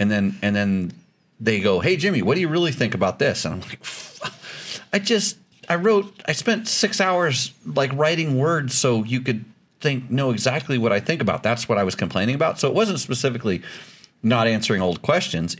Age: 40-59